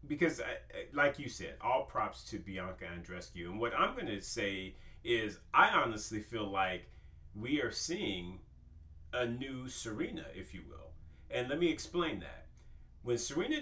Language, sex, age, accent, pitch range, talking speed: English, male, 40-59, American, 90-125 Hz, 160 wpm